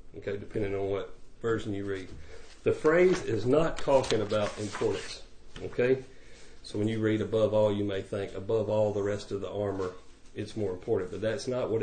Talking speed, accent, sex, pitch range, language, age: 195 wpm, American, male, 105-135 Hz, English, 40-59